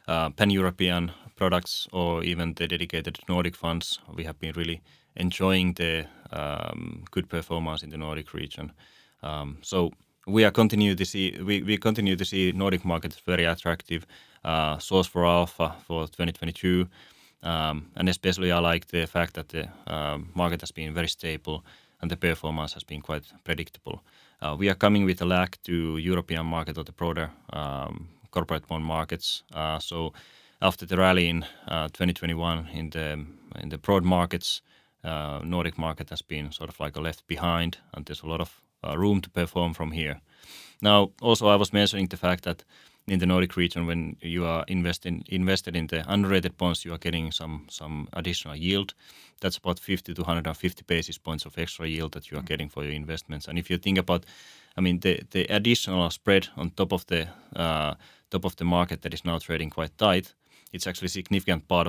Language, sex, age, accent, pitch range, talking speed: English, male, 20-39, Finnish, 80-90 Hz, 190 wpm